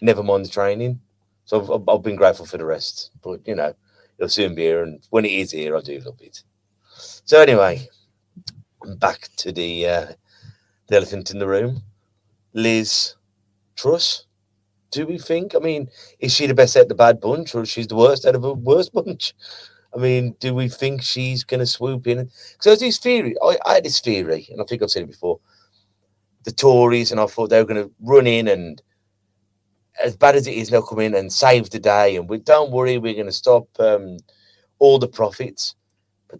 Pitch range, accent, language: 100-140 Hz, British, English